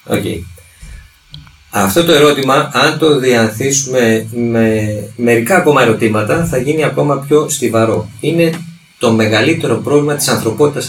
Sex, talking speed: male, 125 wpm